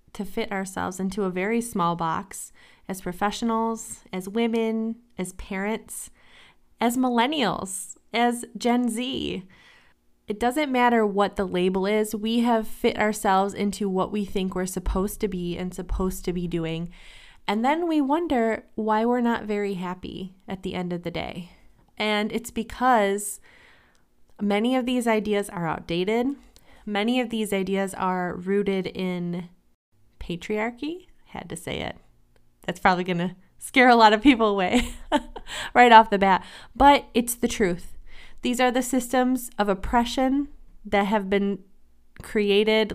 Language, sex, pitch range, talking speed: English, female, 185-230 Hz, 150 wpm